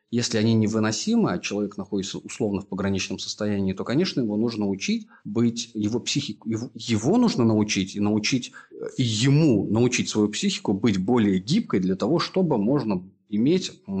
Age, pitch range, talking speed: 30-49, 100-120 Hz, 150 wpm